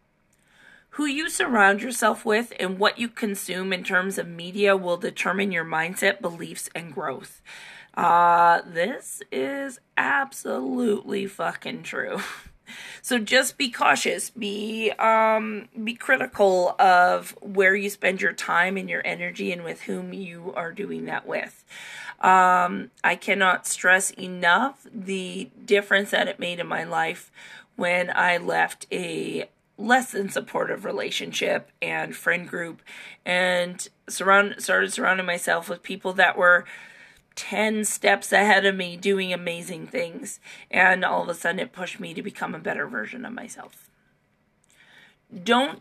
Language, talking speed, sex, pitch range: English, 140 wpm, female, 180-230 Hz